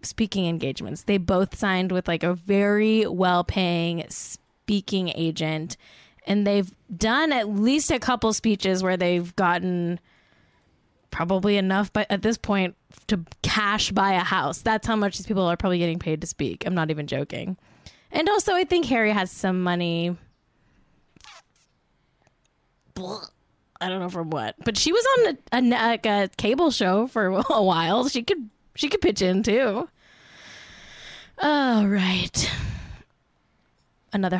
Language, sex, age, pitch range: English, female, 10-29, 180-255 Hz